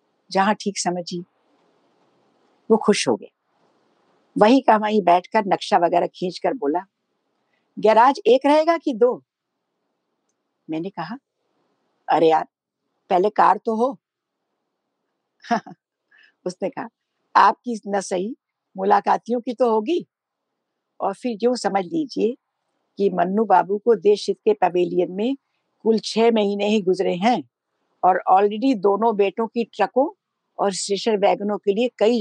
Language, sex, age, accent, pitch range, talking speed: Hindi, female, 60-79, native, 180-235 Hz, 125 wpm